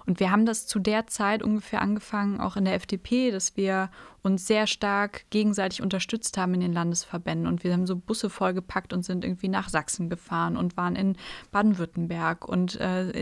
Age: 20-39